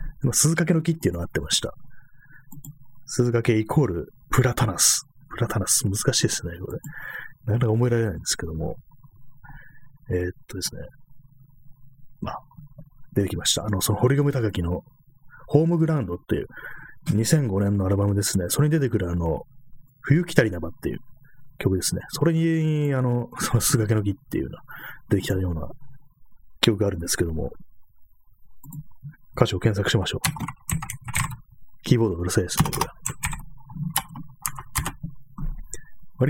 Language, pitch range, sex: Japanese, 105-145 Hz, male